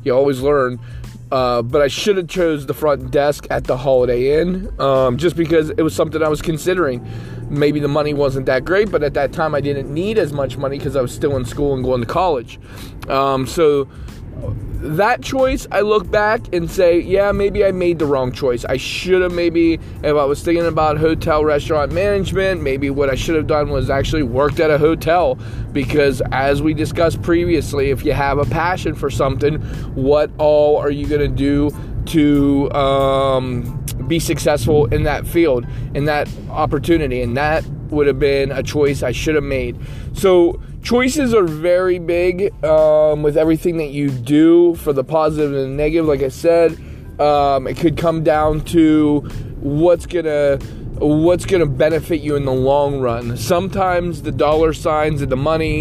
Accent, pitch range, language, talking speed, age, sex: American, 135-160 Hz, English, 185 wpm, 20-39, male